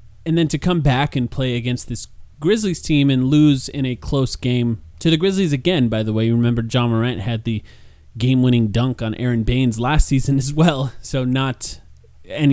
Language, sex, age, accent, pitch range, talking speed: English, male, 20-39, American, 120-150 Hz, 200 wpm